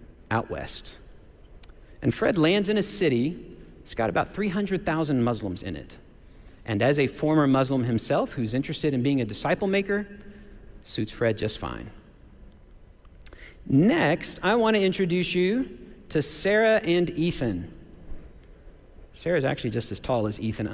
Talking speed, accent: 140 wpm, American